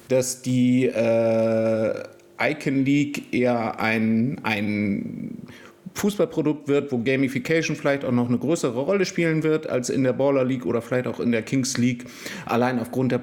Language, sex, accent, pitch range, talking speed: German, male, German, 115-135 Hz, 160 wpm